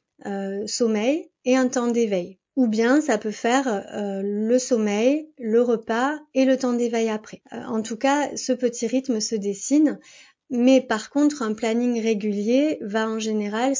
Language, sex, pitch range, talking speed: French, female, 210-250 Hz, 170 wpm